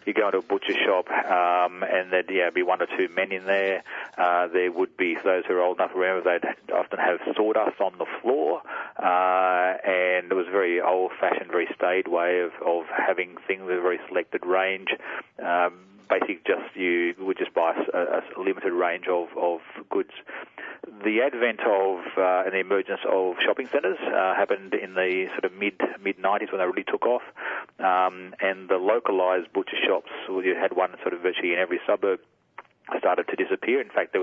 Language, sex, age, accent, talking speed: English, male, 30-49, Australian, 200 wpm